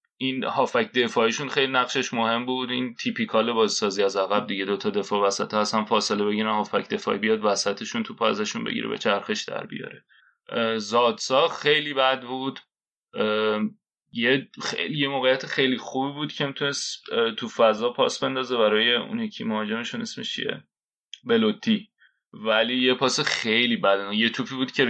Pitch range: 105-135 Hz